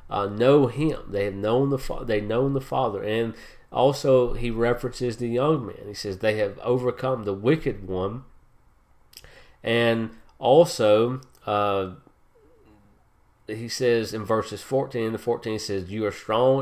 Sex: male